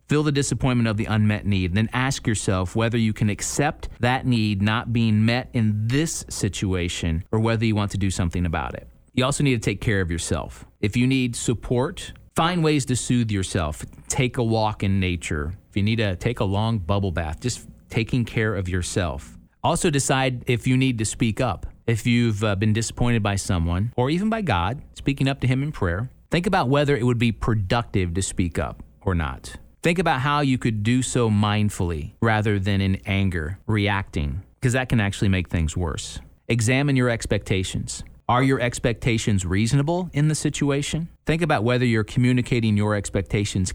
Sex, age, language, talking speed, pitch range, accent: male, 30-49, English, 190 wpm, 95-125 Hz, American